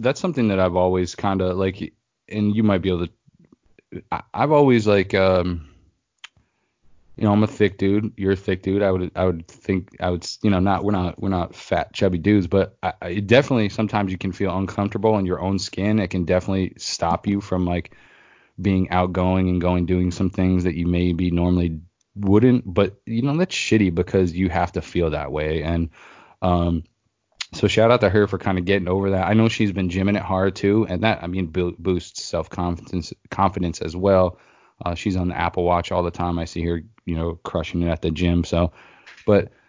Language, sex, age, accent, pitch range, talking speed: English, male, 20-39, American, 85-100 Hz, 215 wpm